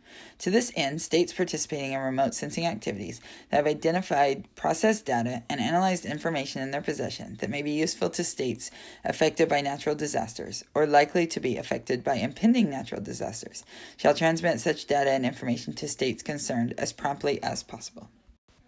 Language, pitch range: English, 135-175 Hz